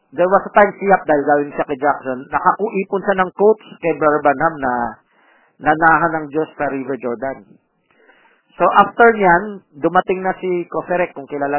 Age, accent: 40-59, native